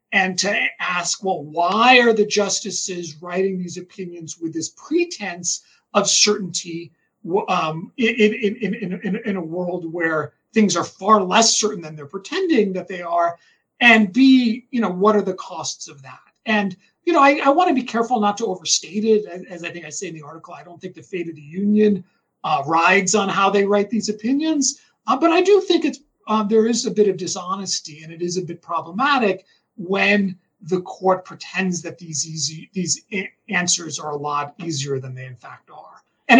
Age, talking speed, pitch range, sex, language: 40-59, 200 wpm, 175-220 Hz, male, English